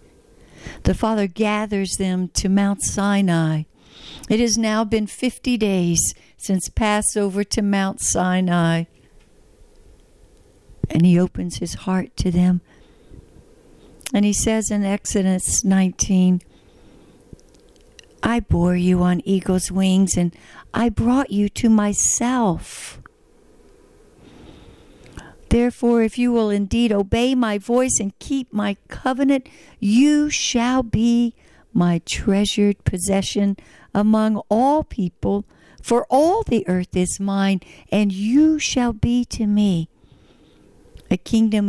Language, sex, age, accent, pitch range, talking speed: English, female, 60-79, American, 185-230 Hz, 110 wpm